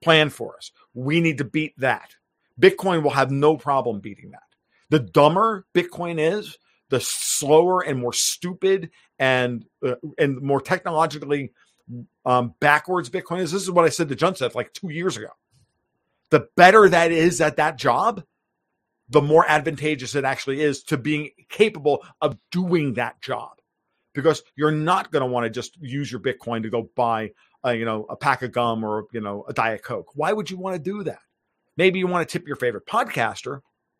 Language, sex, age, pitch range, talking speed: English, male, 50-69, 130-175 Hz, 190 wpm